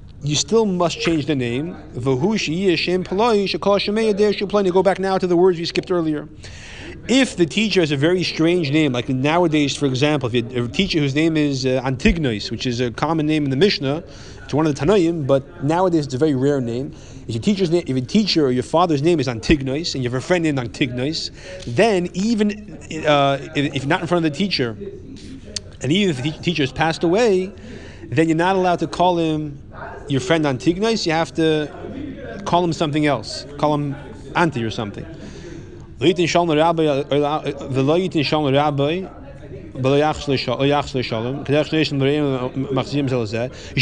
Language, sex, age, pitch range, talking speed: English, male, 30-49, 140-175 Hz, 155 wpm